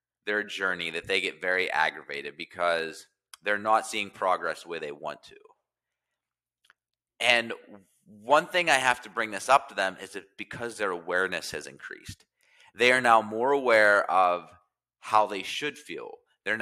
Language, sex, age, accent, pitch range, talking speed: English, male, 30-49, American, 95-135 Hz, 165 wpm